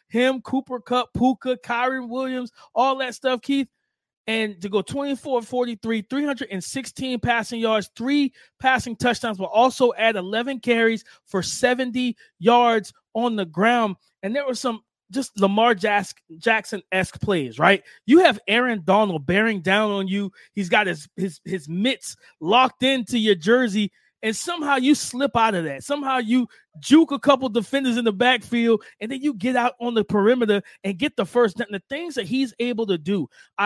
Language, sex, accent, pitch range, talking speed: English, male, American, 200-255 Hz, 170 wpm